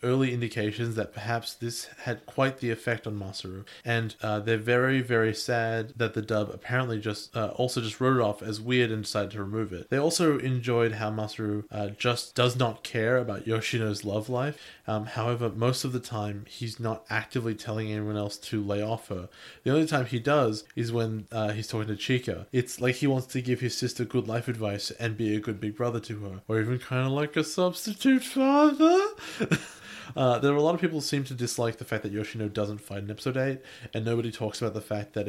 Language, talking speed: English, 225 wpm